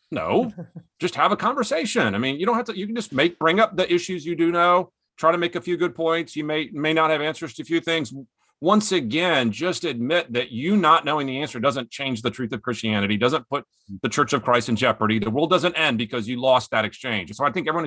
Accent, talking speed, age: American, 255 wpm, 40-59